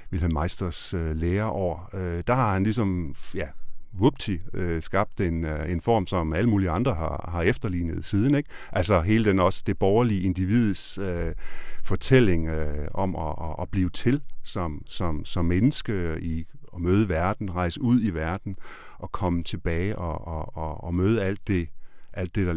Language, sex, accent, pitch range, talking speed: Danish, male, native, 85-105 Hz, 165 wpm